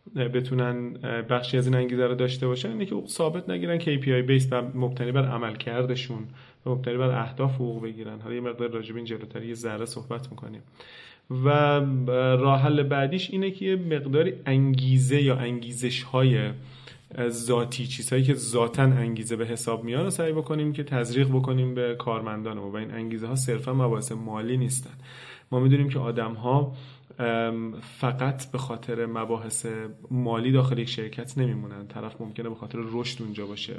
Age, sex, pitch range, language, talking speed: 30-49, male, 115-130 Hz, Persian, 160 wpm